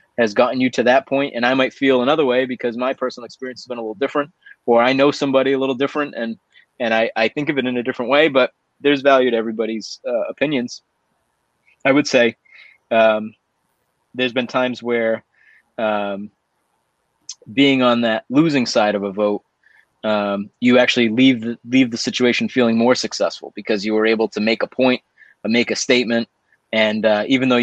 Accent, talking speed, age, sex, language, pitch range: American, 195 wpm, 20-39, male, English, 115-130 Hz